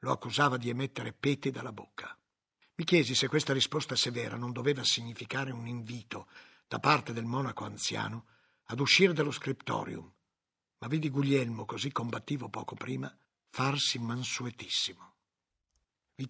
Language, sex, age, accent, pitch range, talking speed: Italian, male, 60-79, native, 130-160 Hz, 135 wpm